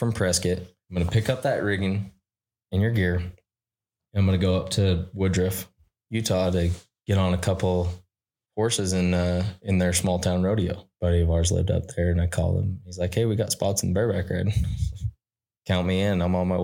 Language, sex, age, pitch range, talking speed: English, male, 20-39, 90-105 Hz, 210 wpm